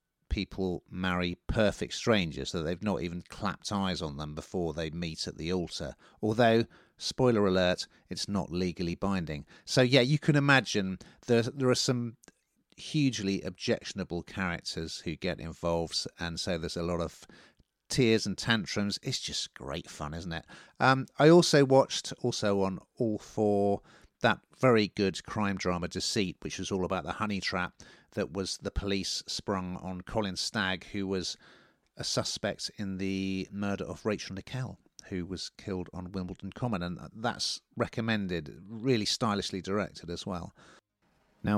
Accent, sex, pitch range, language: British, male, 85-105 Hz, English